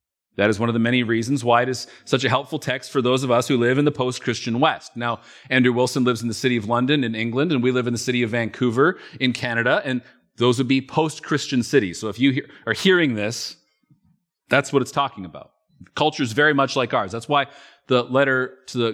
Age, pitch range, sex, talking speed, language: 30-49, 120-145 Hz, male, 235 wpm, English